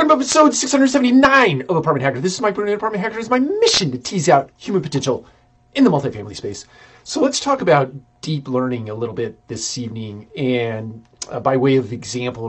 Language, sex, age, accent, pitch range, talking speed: English, male, 30-49, American, 115-140 Hz, 190 wpm